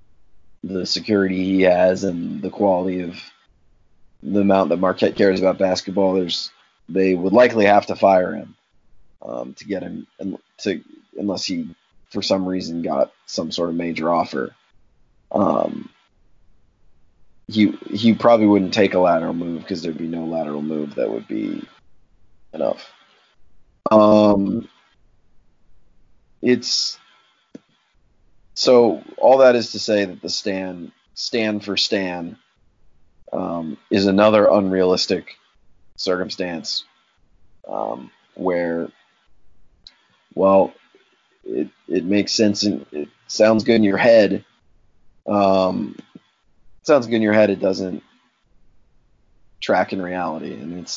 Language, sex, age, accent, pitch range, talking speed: English, male, 30-49, American, 85-100 Hz, 125 wpm